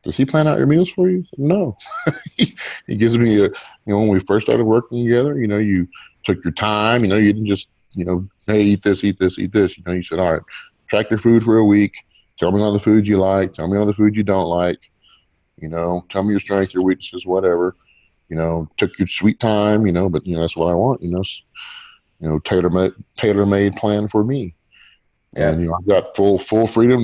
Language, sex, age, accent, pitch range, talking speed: English, male, 30-49, American, 85-105 Hz, 240 wpm